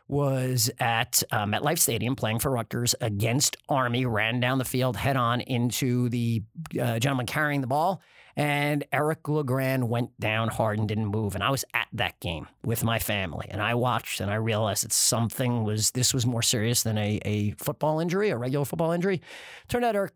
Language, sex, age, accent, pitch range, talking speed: English, male, 30-49, American, 115-145 Hz, 195 wpm